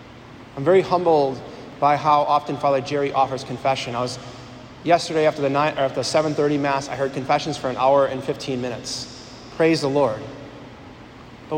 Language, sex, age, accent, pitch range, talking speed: English, male, 20-39, American, 130-150 Hz, 155 wpm